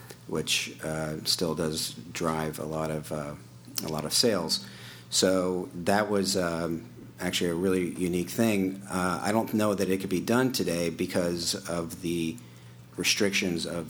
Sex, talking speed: male, 160 wpm